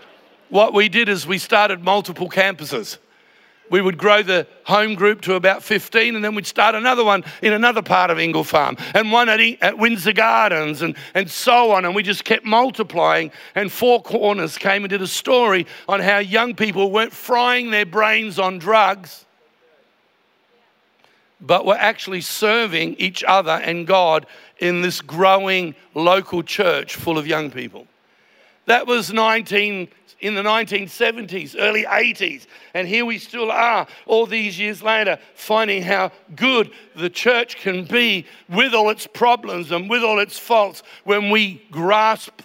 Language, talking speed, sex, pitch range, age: English, 160 wpm, male, 185-220 Hz, 60-79